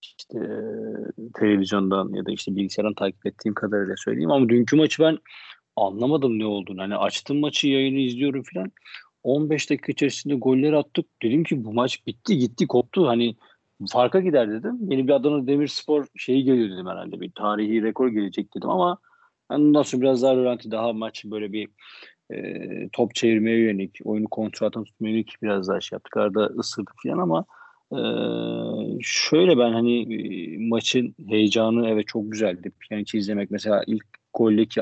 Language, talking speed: Turkish, 160 wpm